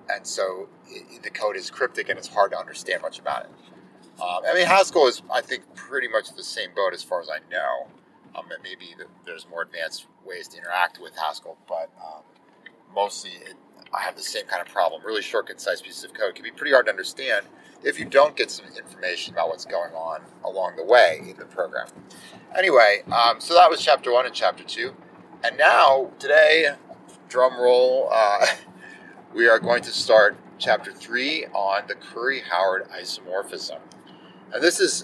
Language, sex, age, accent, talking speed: English, male, 30-49, American, 190 wpm